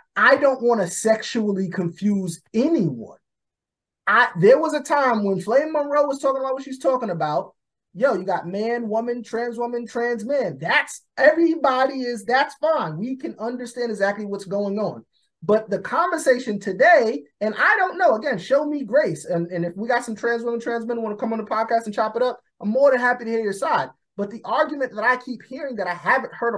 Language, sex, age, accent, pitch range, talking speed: English, male, 30-49, American, 205-265 Hz, 210 wpm